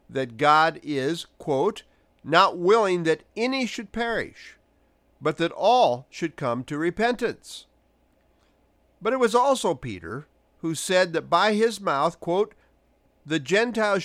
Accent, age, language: American, 50-69, English